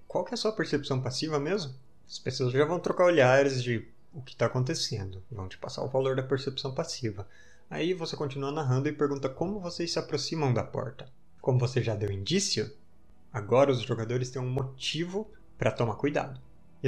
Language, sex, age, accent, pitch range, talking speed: Portuguese, male, 20-39, Brazilian, 115-140 Hz, 190 wpm